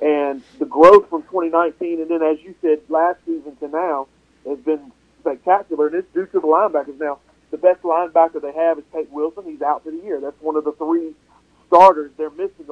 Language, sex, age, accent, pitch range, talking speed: English, male, 40-59, American, 150-175 Hz, 210 wpm